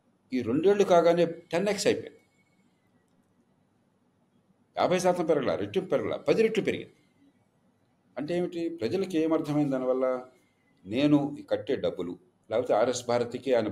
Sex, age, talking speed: male, 40-59, 110 wpm